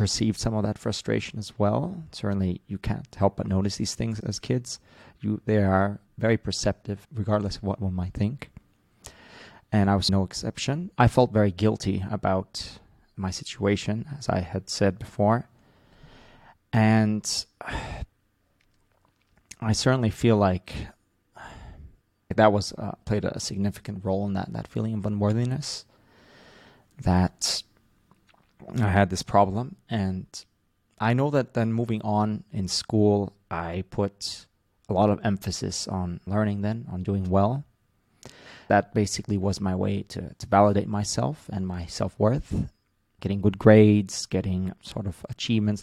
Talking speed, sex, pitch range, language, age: 145 wpm, male, 95-110 Hz, English, 30-49